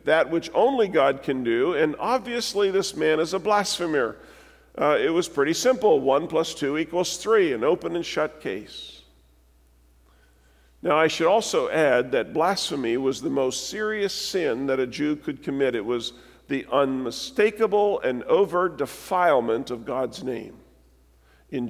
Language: English